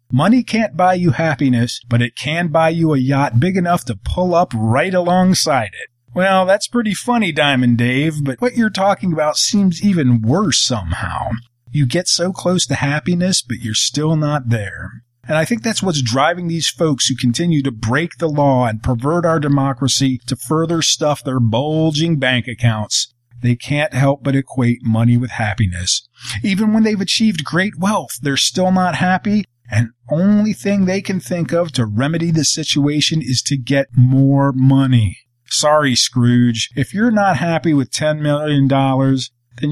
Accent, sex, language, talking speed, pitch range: American, male, English, 175 wpm, 120-170 Hz